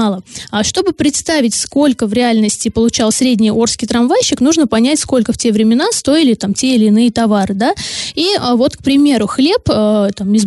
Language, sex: Russian, female